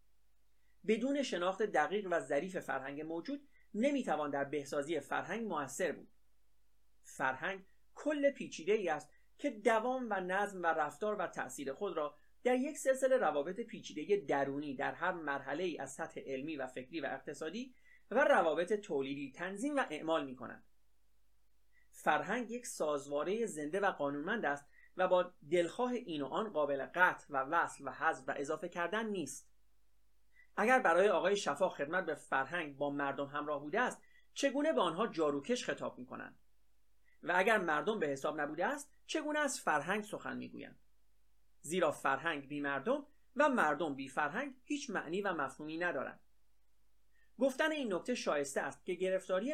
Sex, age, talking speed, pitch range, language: male, 30-49, 155 wpm, 145-235 Hz, Persian